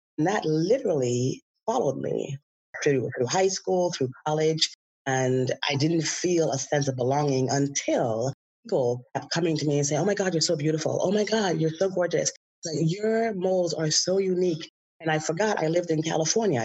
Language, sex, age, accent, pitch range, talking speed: English, female, 30-49, American, 140-180 Hz, 185 wpm